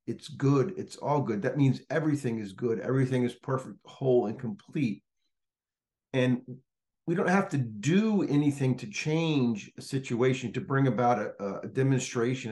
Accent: American